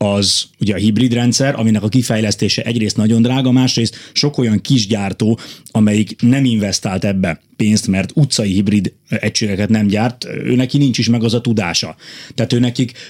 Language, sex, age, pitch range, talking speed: Hungarian, male, 30-49, 105-130 Hz, 165 wpm